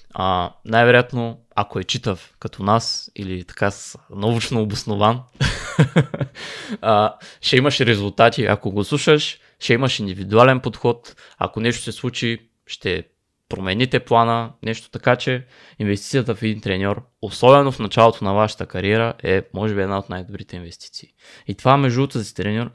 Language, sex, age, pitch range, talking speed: Bulgarian, male, 20-39, 105-120 Hz, 140 wpm